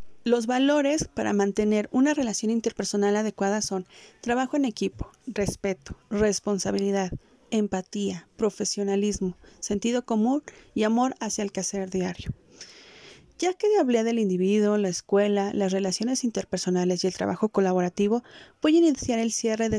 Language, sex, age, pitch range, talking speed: Spanish, female, 30-49, 195-235 Hz, 135 wpm